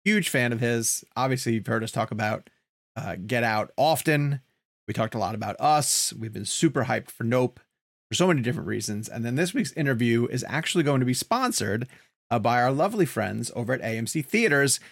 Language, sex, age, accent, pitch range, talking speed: English, male, 30-49, American, 115-140 Hz, 205 wpm